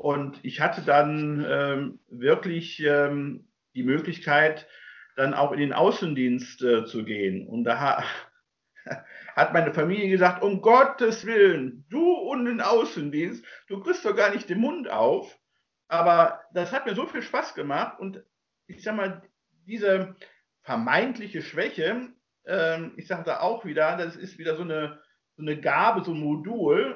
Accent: German